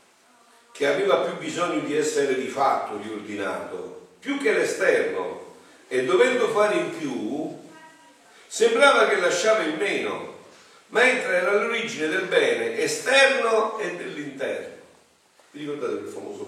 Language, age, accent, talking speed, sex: Italian, 40-59, native, 125 wpm, male